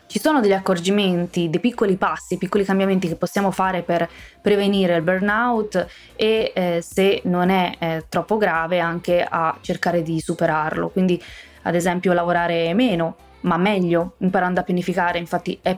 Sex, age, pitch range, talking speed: female, 20-39, 170-200 Hz, 155 wpm